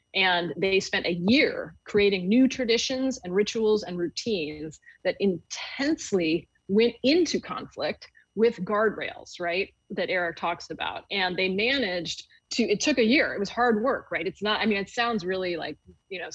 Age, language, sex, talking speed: 30-49, English, female, 175 wpm